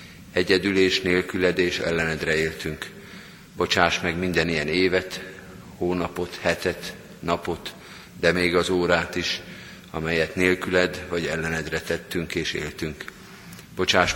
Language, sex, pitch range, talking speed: Hungarian, male, 85-95 Hz, 105 wpm